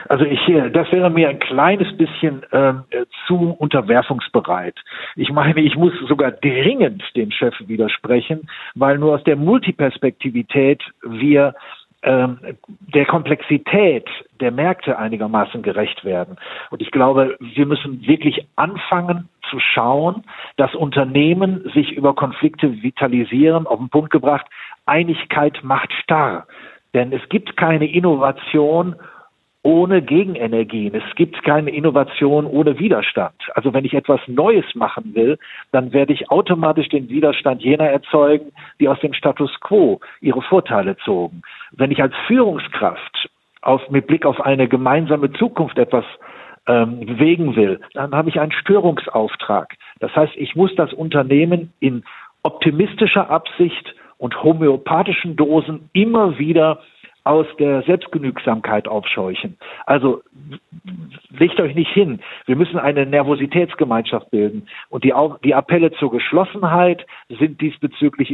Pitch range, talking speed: 135-165 Hz, 130 wpm